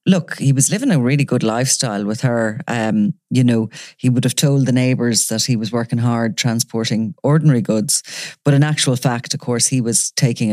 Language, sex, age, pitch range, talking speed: English, female, 30-49, 115-140 Hz, 205 wpm